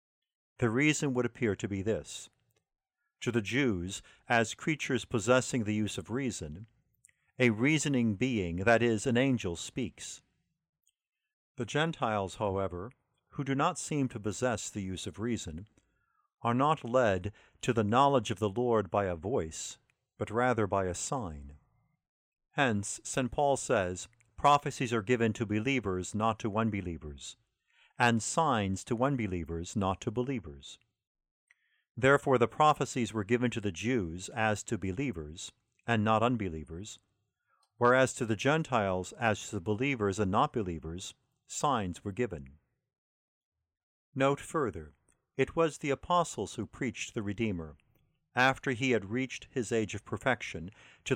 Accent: American